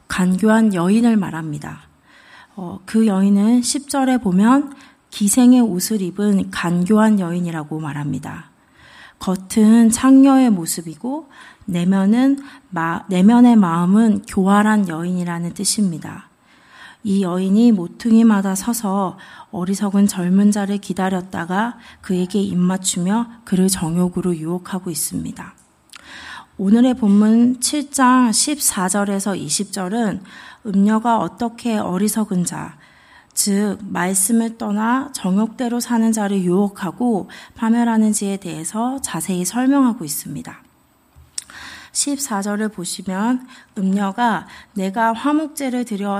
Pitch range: 190-245 Hz